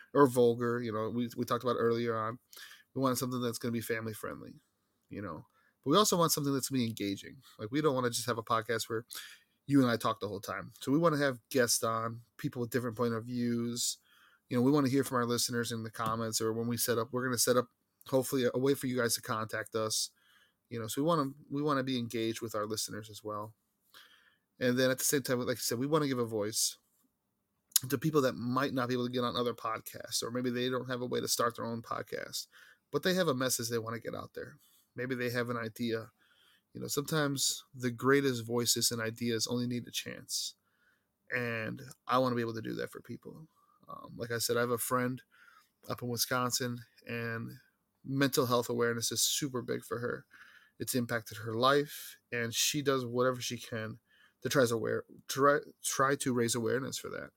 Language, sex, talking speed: English, male, 235 wpm